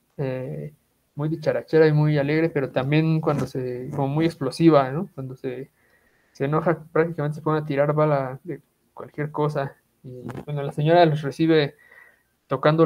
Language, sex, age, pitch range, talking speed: Spanish, male, 20-39, 135-160 Hz, 160 wpm